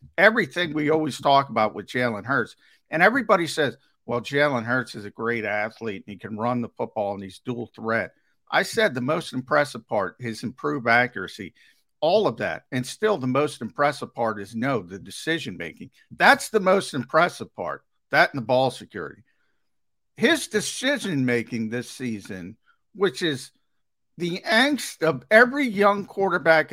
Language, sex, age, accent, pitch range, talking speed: English, male, 50-69, American, 120-155 Hz, 160 wpm